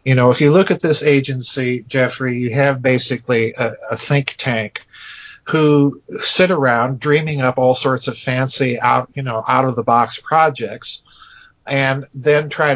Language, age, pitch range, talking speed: English, 50-69, 120-145 Hz, 170 wpm